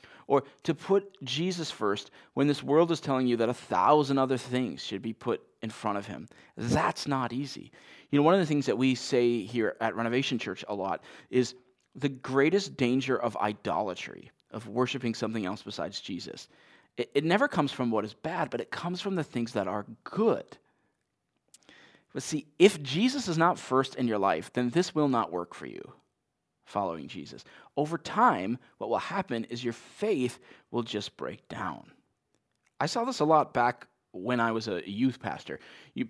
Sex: male